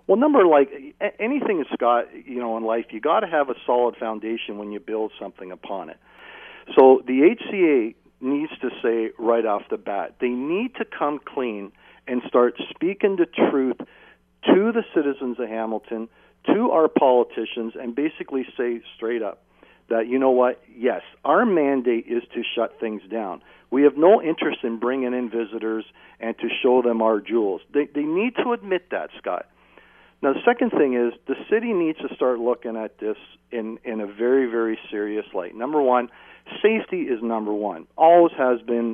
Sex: male